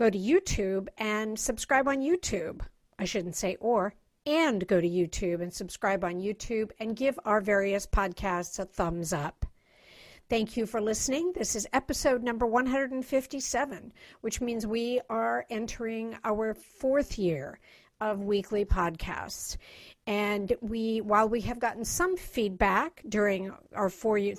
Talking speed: 145 wpm